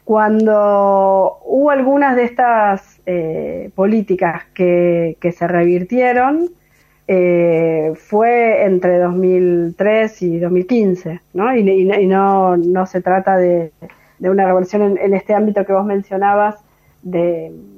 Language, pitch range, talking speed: Spanish, 180-215 Hz, 125 wpm